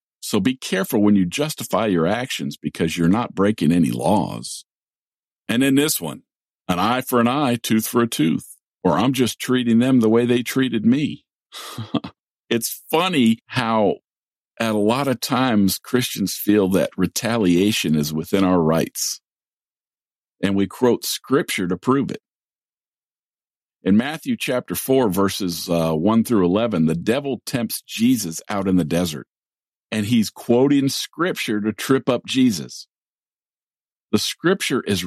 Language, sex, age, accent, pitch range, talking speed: English, male, 50-69, American, 95-130 Hz, 150 wpm